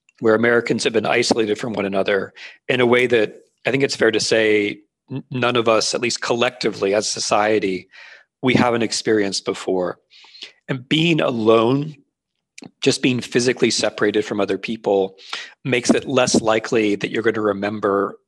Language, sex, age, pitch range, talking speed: English, male, 40-59, 105-120 Hz, 165 wpm